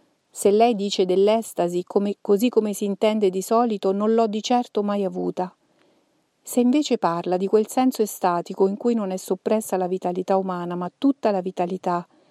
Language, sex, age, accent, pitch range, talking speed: Italian, female, 40-59, native, 190-235 Hz, 175 wpm